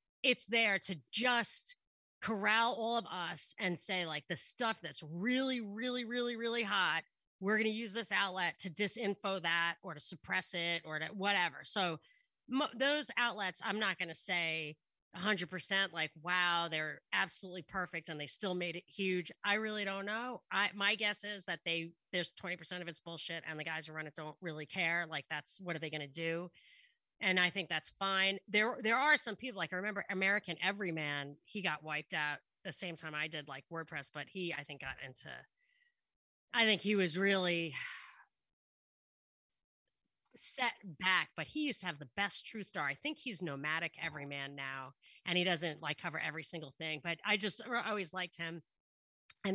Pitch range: 160-210 Hz